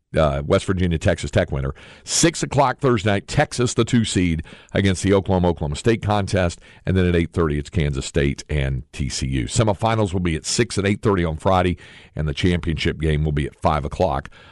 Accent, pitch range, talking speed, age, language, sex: American, 85-115 Hz, 205 wpm, 50-69, English, male